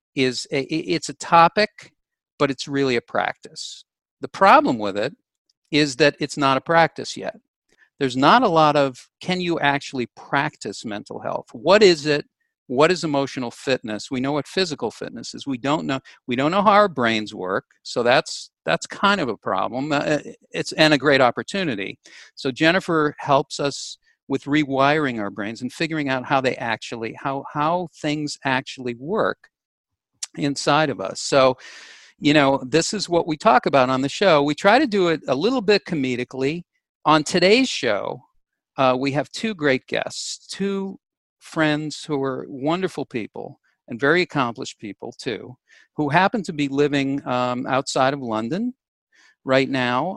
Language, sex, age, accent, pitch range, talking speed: English, male, 50-69, American, 130-160 Hz, 170 wpm